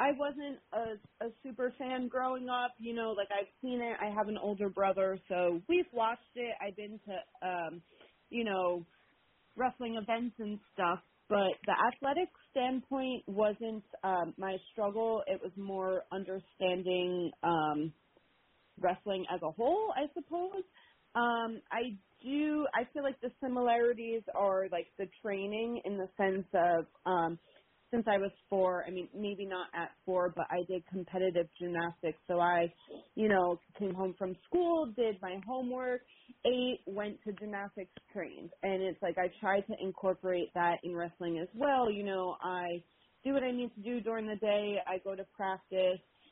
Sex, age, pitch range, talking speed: female, 30-49, 180-230 Hz, 165 wpm